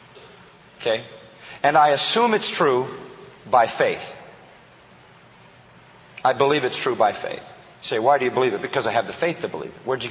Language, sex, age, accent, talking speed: English, male, 40-59, American, 185 wpm